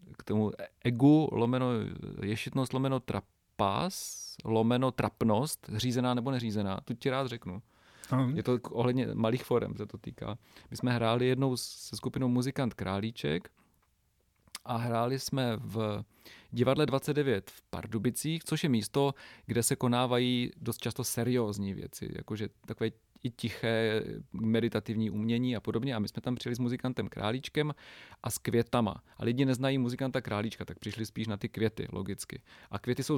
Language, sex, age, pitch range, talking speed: Czech, male, 40-59, 110-130 Hz, 150 wpm